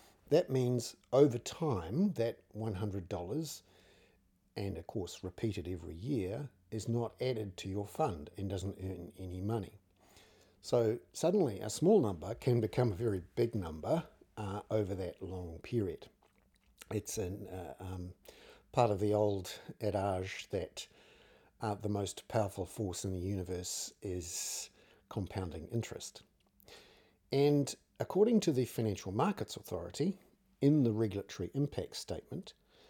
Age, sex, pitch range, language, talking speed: 60-79, male, 95-130 Hz, English, 130 wpm